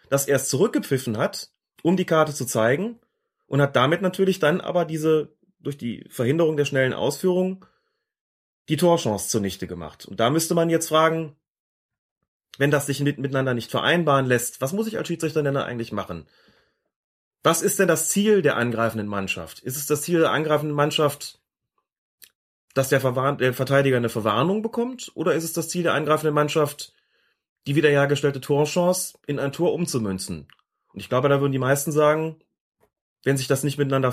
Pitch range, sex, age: 125-165 Hz, male, 30-49